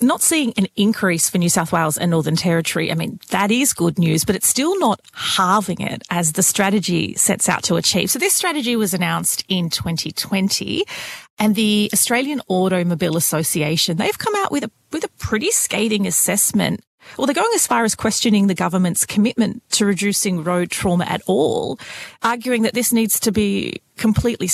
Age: 30-49